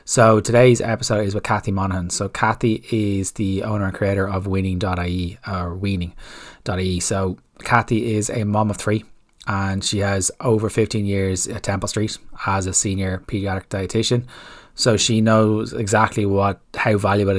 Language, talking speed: English, 160 wpm